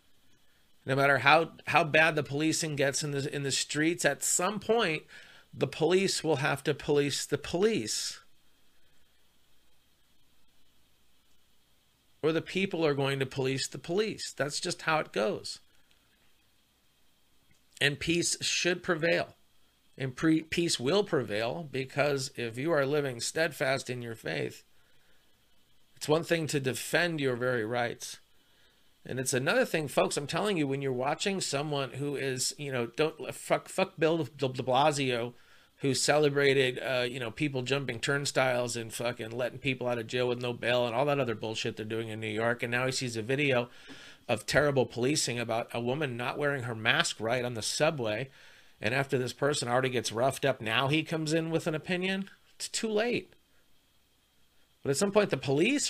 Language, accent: English, American